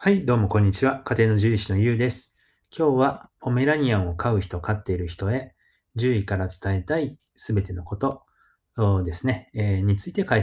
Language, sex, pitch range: Japanese, male, 100-125 Hz